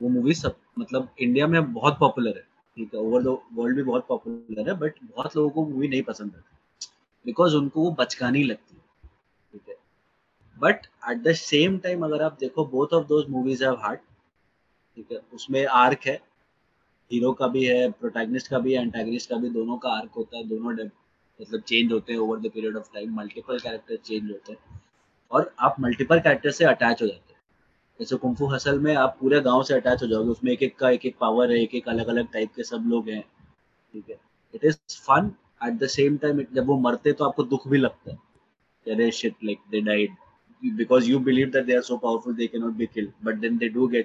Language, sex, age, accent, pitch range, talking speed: Hindi, male, 20-39, native, 115-150 Hz, 140 wpm